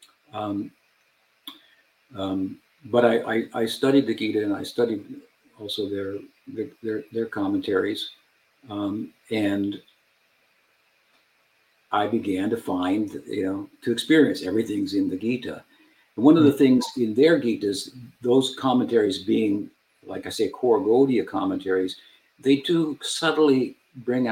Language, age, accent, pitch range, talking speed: English, 60-79, American, 105-135 Hz, 130 wpm